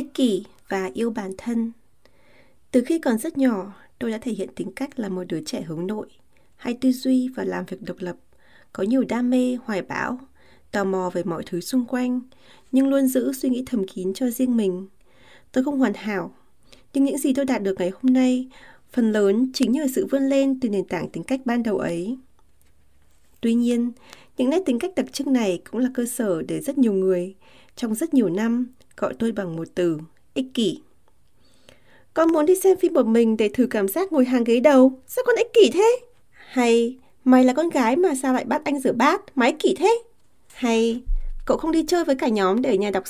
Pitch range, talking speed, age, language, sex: 220-295 Hz, 215 wpm, 20-39, Vietnamese, female